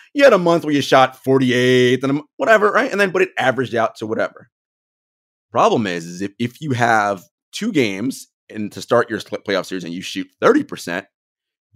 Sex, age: male, 30-49